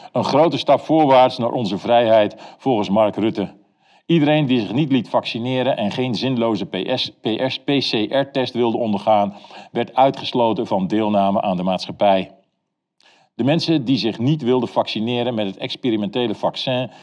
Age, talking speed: 50-69, 140 wpm